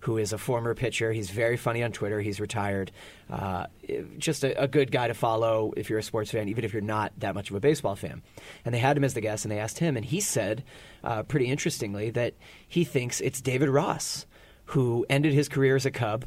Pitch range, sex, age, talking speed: 115-145 Hz, male, 30-49, 240 wpm